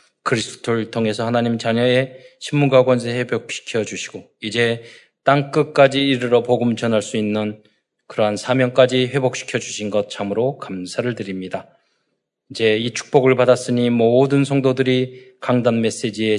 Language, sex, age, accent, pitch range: Korean, male, 20-39, native, 115-130 Hz